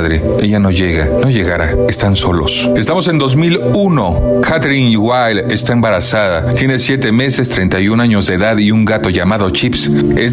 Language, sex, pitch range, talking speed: Spanish, male, 95-130 Hz, 155 wpm